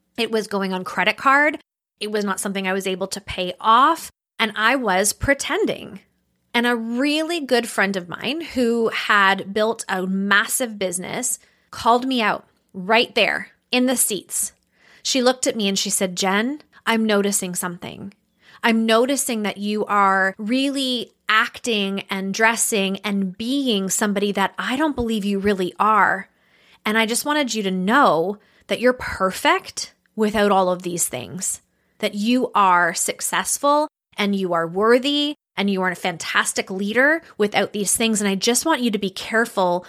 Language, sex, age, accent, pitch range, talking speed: English, female, 20-39, American, 195-245 Hz, 165 wpm